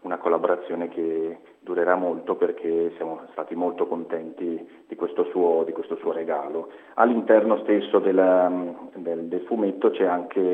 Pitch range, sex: 90-105 Hz, male